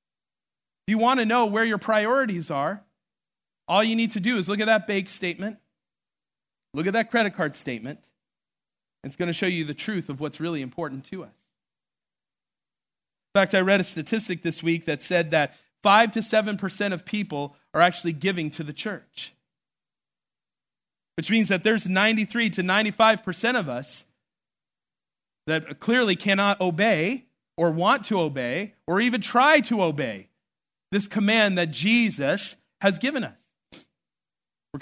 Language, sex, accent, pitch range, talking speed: English, male, American, 175-225 Hz, 155 wpm